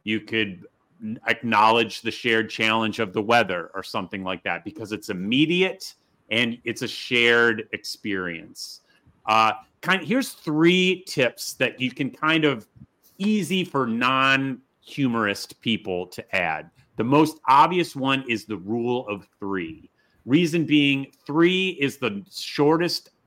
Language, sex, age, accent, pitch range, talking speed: English, male, 30-49, American, 115-150 Hz, 140 wpm